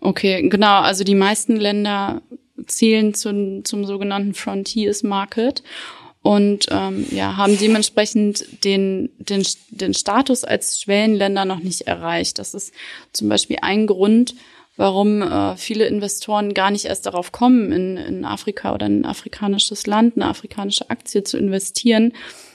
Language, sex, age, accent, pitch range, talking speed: German, female, 20-39, German, 200-225 Hz, 135 wpm